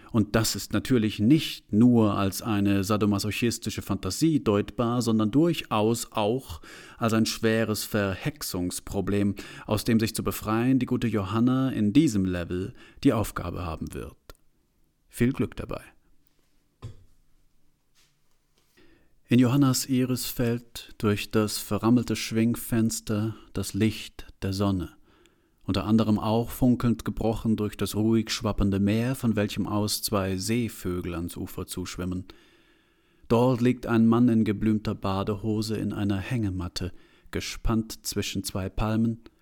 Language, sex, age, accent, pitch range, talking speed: German, male, 40-59, German, 100-115 Hz, 120 wpm